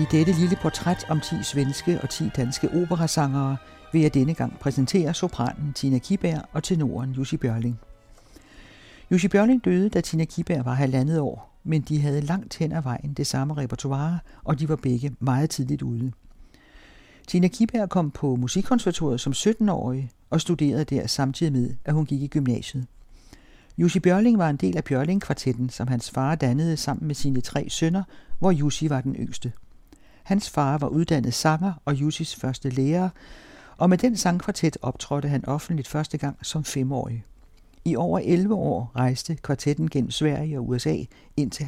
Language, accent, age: Danish, native, 60-79